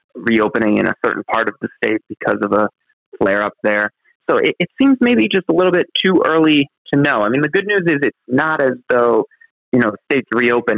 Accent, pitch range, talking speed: American, 110-160 Hz, 225 wpm